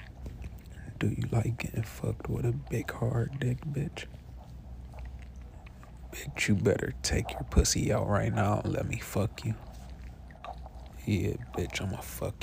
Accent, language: American, English